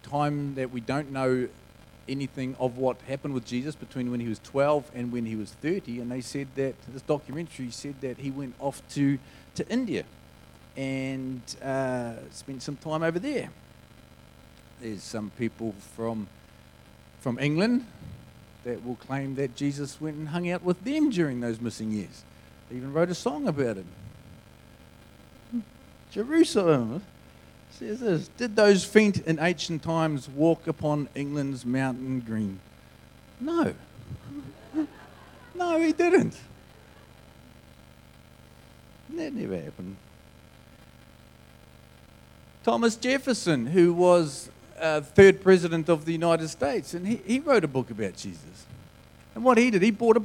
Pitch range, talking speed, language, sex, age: 115-165 Hz, 140 wpm, English, male, 40-59